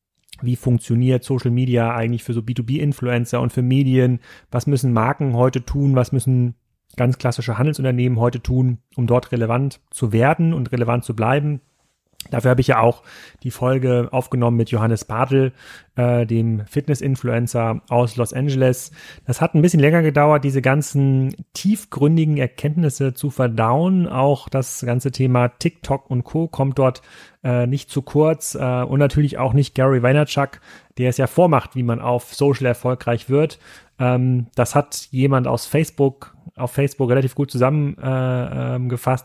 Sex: male